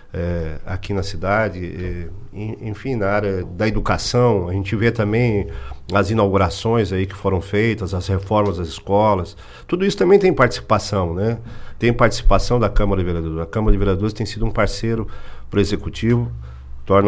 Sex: male